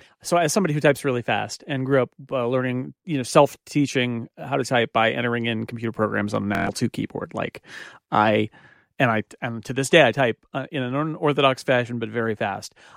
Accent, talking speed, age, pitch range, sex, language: American, 210 wpm, 40-59, 120-150 Hz, male, English